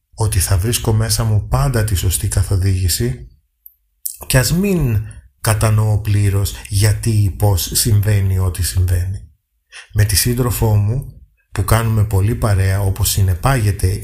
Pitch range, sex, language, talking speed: 95-120 Hz, male, Greek, 130 wpm